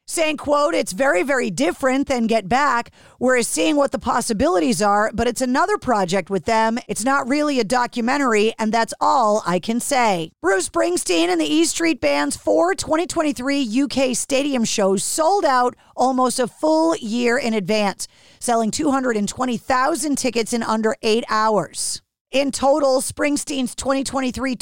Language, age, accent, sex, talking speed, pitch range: English, 40-59, American, female, 155 wpm, 220-280 Hz